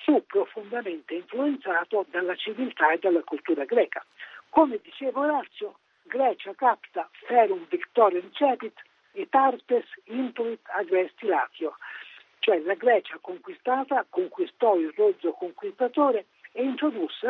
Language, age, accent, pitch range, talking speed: Italian, 60-79, native, 215-335 Hz, 110 wpm